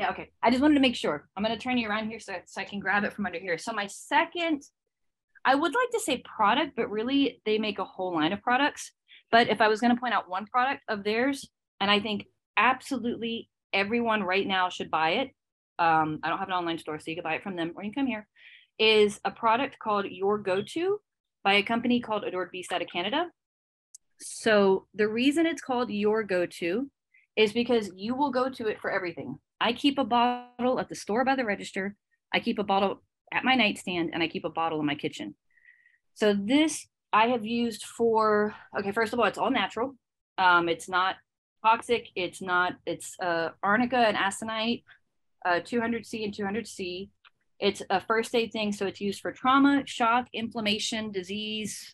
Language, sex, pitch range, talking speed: English, female, 190-245 Hz, 210 wpm